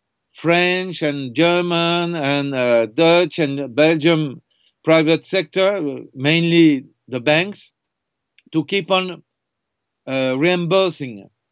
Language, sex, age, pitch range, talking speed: English, male, 50-69, 135-180 Hz, 95 wpm